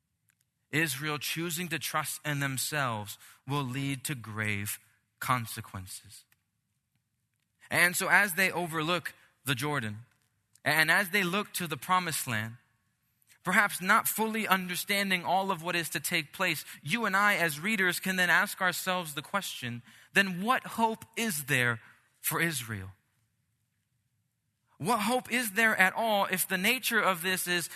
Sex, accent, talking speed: male, American, 145 wpm